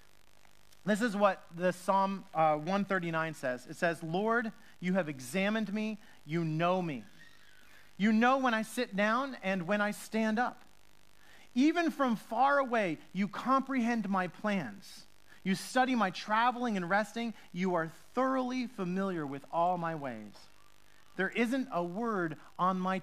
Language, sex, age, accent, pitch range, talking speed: English, male, 40-59, American, 160-220 Hz, 150 wpm